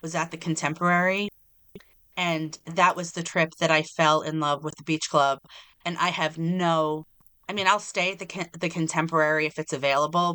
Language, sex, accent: English, female, American